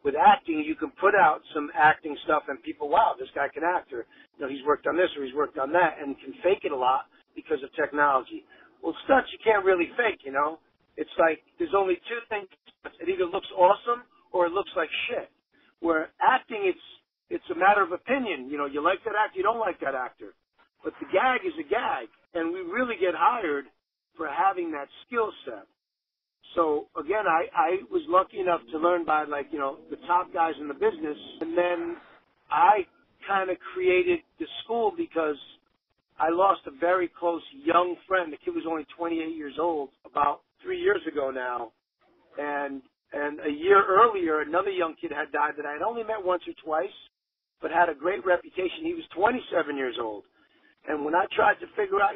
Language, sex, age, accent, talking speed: English, male, 50-69, American, 205 wpm